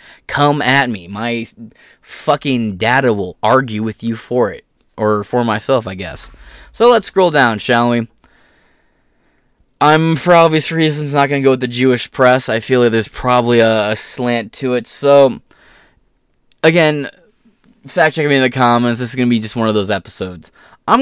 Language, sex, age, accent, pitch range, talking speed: English, male, 20-39, American, 110-140 Hz, 185 wpm